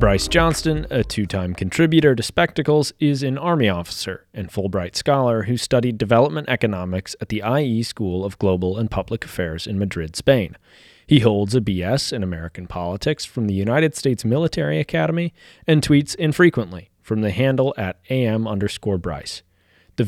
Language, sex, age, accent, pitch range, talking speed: English, male, 30-49, American, 95-145 Hz, 160 wpm